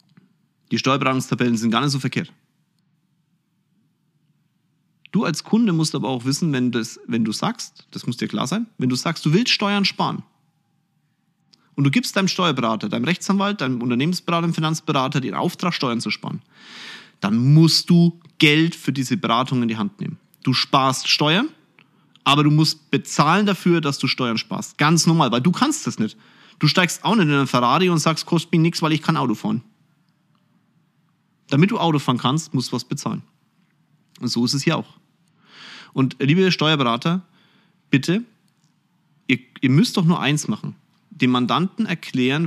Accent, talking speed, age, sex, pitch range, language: German, 175 wpm, 30-49, male, 140-185 Hz, German